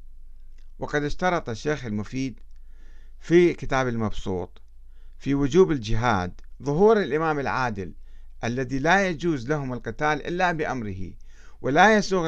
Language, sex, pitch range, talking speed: Arabic, male, 115-170 Hz, 110 wpm